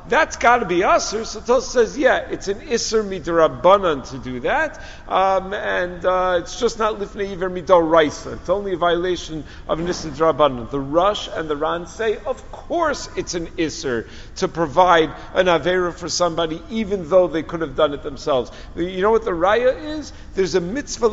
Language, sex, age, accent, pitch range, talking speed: English, male, 50-69, American, 160-250 Hz, 180 wpm